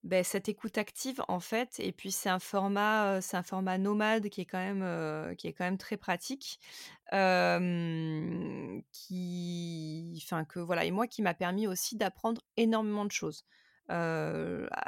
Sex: female